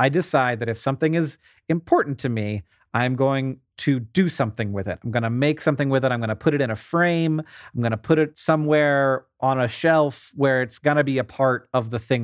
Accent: American